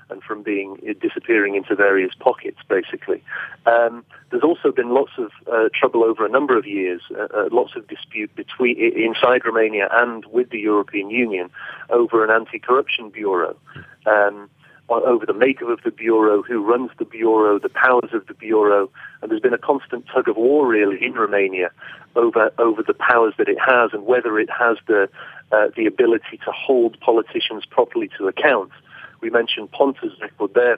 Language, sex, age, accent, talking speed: English, male, 40-59, British, 175 wpm